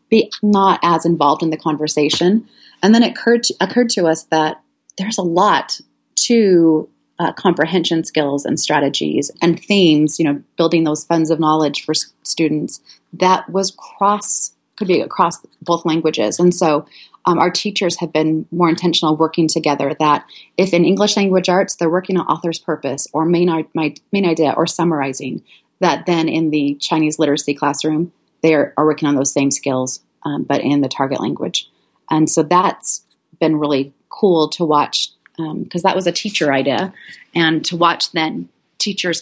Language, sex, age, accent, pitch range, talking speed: English, female, 30-49, American, 155-180 Hz, 170 wpm